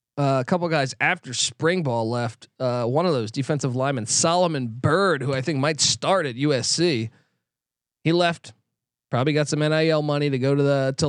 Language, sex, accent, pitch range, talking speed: English, male, American, 130-165 Hz, 190 wpm